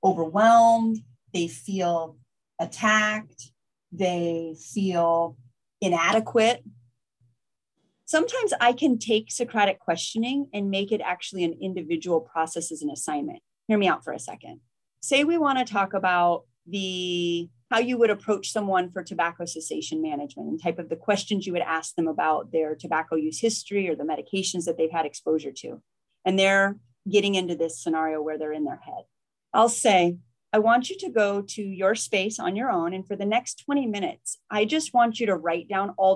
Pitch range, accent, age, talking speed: 165-230 Hz, American, 30-49, 175 wpm